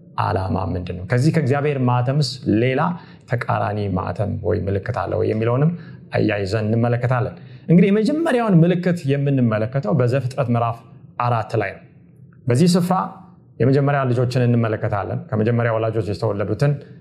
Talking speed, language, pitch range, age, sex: 115 wpm, Amharic, 120-155 Hz, 30-49, male